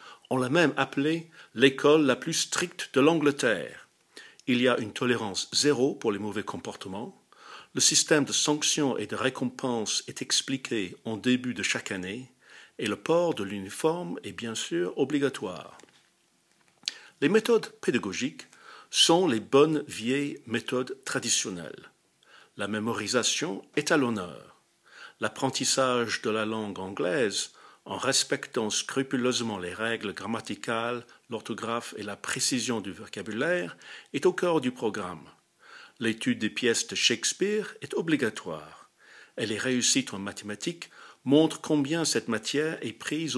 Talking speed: 135 wpm